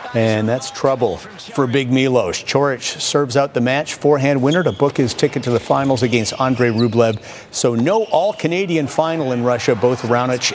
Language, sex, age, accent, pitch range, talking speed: English, male, 50-69, American, 130-160 Hz, 180 wpm